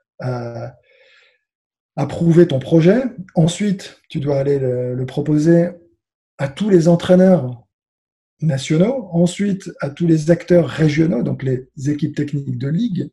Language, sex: French, male